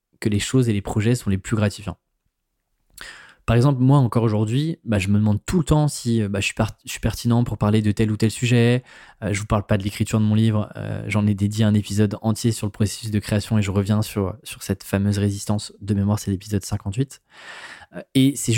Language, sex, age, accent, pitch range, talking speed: French, male, 20-39, French, 105-130 Hz, 240 wpm